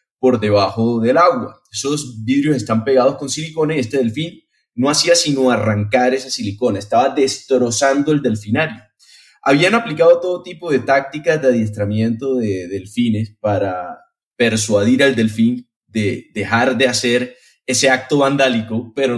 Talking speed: 140 wpm